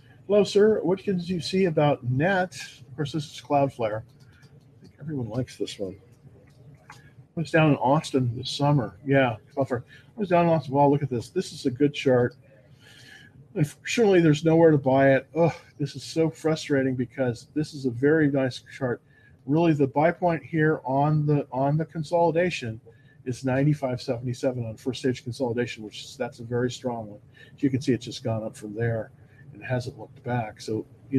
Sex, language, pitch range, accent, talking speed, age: male, English, 125-145 Hz, American, 185 wpm, 50-69